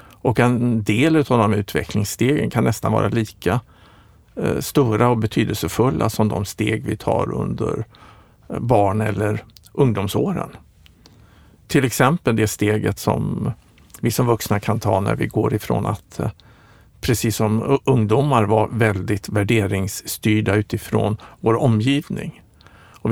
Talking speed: 120 wpm